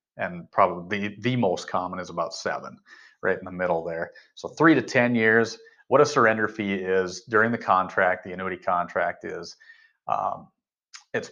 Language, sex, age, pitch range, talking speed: English, male, 40-59, 95-125 Hz, 175 wpm